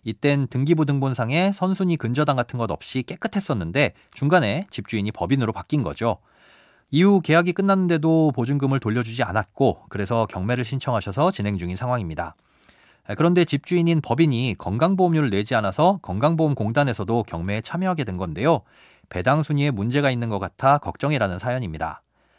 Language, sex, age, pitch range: Korean, male, 30-49, 110-155 Hz